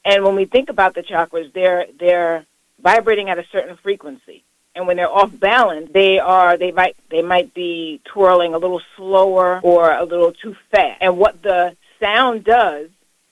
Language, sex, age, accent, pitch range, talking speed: English, female, 40-59, American, 180-230 Hz, 180 wpm